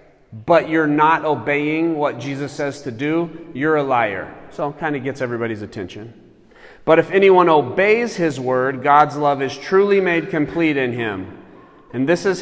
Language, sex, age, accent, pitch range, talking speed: English, male, 30-49, American, 115-155 Hz, 175 wpm